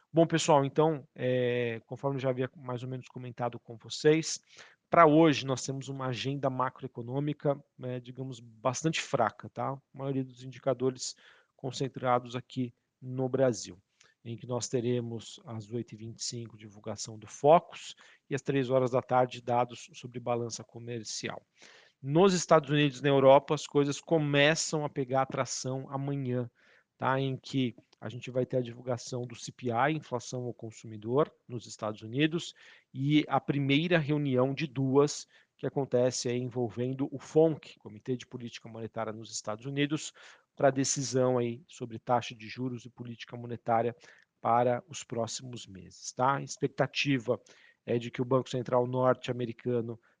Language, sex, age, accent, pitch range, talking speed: Portuguese, male, 40-59, Brazilian, 120-140 Hz, 150 wpm